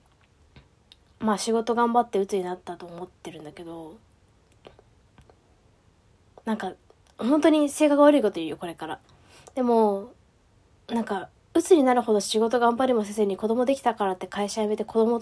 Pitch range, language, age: 175-235 Hz, Japanese, 20-39